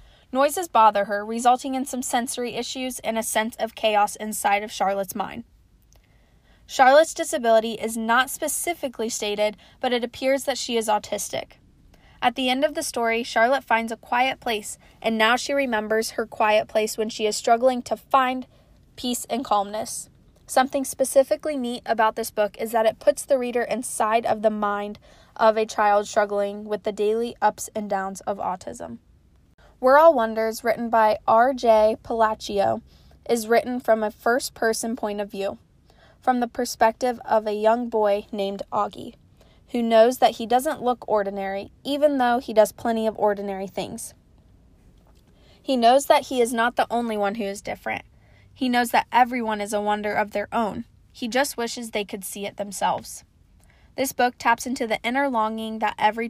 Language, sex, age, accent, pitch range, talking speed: English, female, 20-39, American, 215-250 Hz, 175 wpm